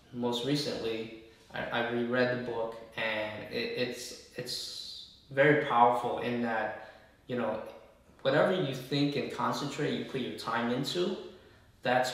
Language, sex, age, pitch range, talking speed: English, male, 20-39, 115-130 Hz, 135 wpm